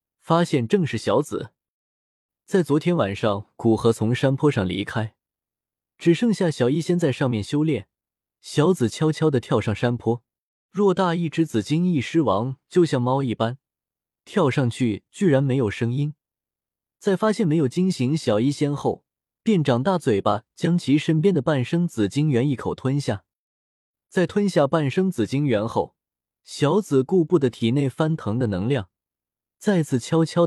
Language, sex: Chinese, male